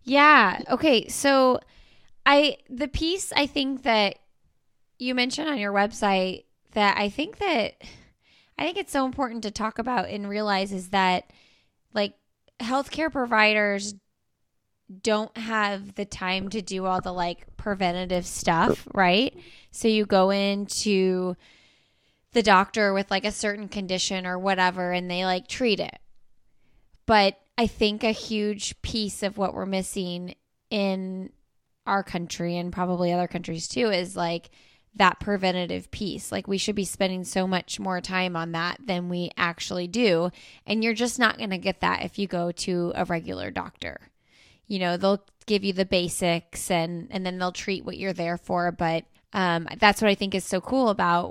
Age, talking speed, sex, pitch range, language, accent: 20-39, 165 wpm, female, 180-220 Hz, English, American